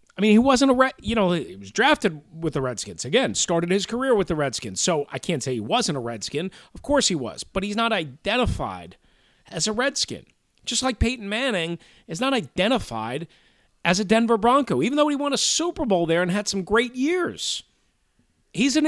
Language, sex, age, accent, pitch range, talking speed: English, male, 40-59, American, 165-270 Hz, 210 wpm